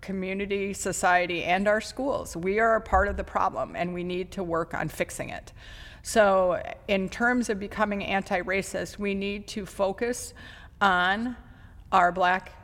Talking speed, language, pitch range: 155 wpm, English, 175-205 Hz